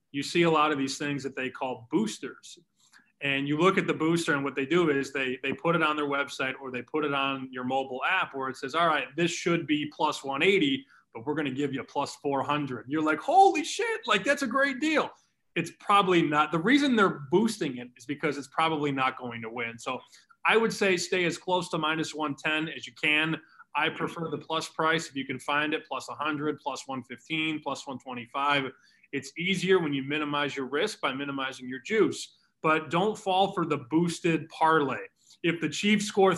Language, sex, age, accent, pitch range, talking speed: English, male, 20-39, American, 140-185 Hz, 220 wpm